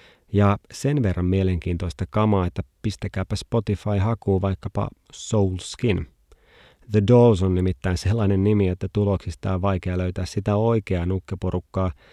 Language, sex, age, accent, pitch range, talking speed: Finnish, male, 30-49, native, 90-105 Hz, 130 wpm